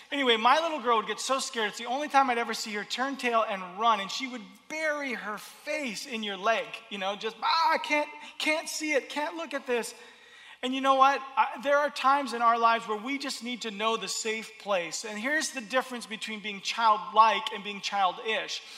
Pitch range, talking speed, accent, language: 210-270 Hz, 225 wpm, American, Russian